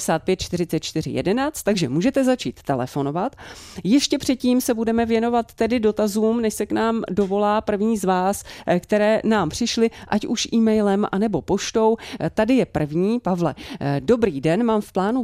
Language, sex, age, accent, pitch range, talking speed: Czech, female, 30-49, native, 165-220 Hz, 145 wpm